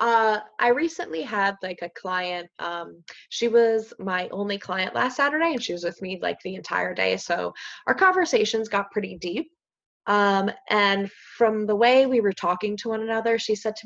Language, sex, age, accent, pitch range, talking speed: English, female, 20-39, American, 185-225 Hz, 190 wpm